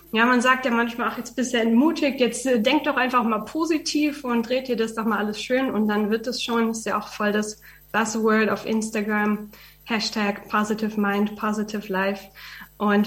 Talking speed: 195 wpm